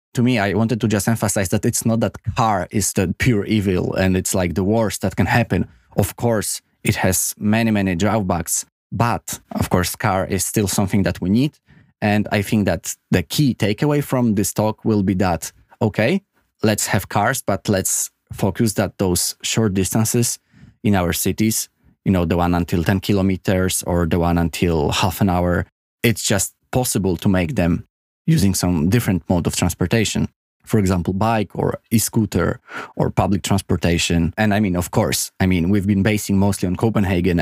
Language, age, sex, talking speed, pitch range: Polish, 20-39, male, 185 wpm, 90-110 Hz